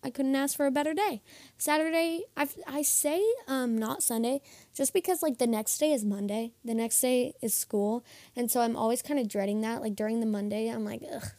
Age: 10-29